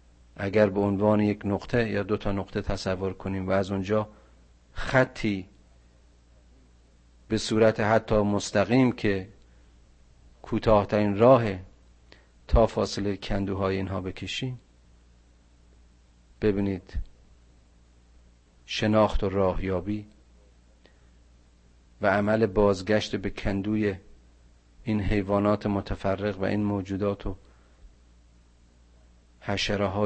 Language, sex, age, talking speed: Persian, male, 40-59, 90 wpm